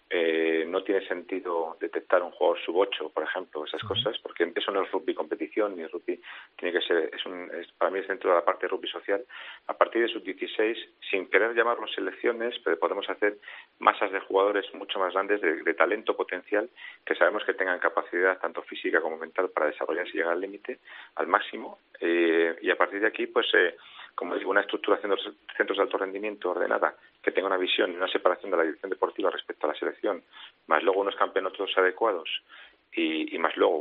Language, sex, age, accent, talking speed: Spanish, male, 40-59, Spanish, 210 wpm